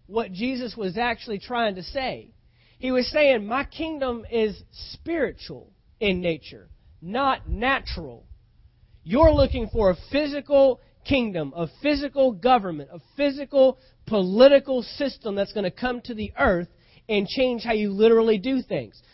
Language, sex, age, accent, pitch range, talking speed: English, male, 30-49, American, 185-250 Hz, 140 wpm